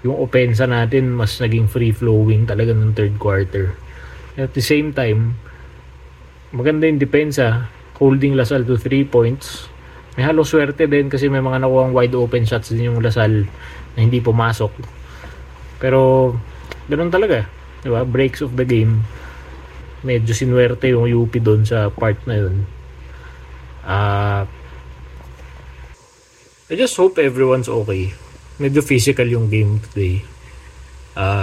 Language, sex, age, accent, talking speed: English, male, 20-39, Filipino, 130 wpm